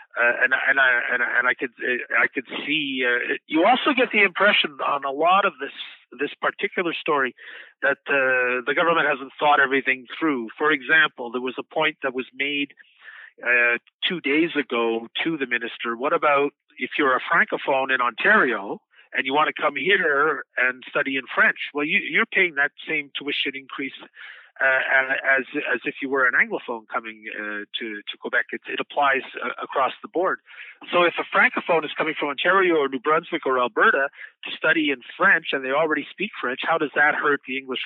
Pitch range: 130-170 Hz